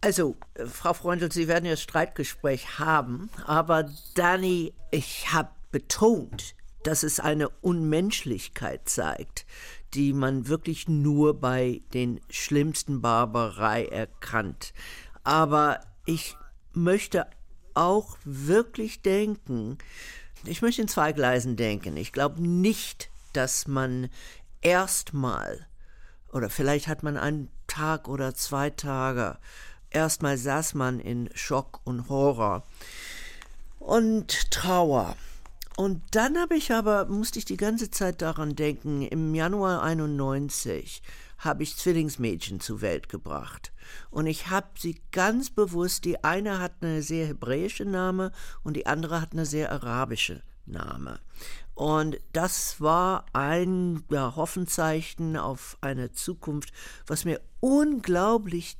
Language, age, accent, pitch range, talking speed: German, 50-69, German, 135-180 Hz, 120 wpm